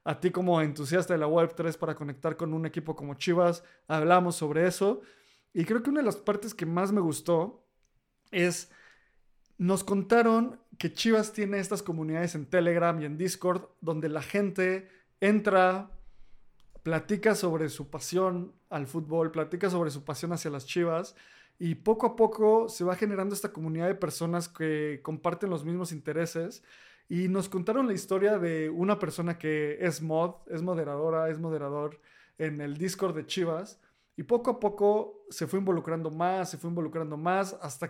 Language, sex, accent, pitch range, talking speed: Spanish, male, Mexican, 160-195 Hz, 170 wpm